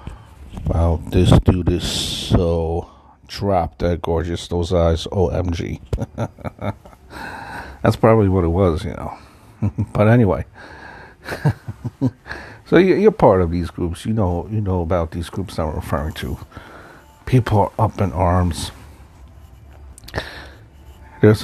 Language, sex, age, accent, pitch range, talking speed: English, male, 50-69, American, 85-110 Hz, 125 wpm